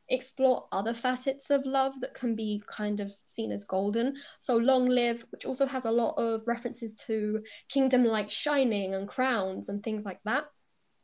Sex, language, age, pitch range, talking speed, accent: female, English, 10-29, 210-250 Hz, 180 wpm, British